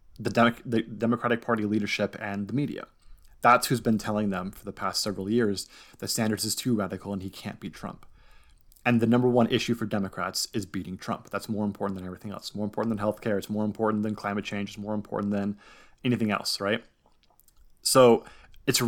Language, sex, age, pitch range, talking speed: English, male, 30-49, 100-115 Hz, 205 wpm